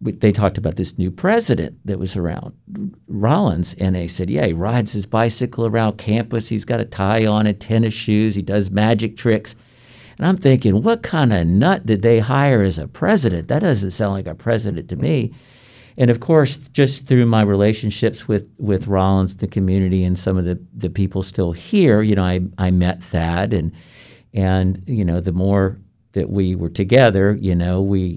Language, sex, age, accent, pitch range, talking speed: English, male, 50-69, American, 90-115 Hz, 195 wpm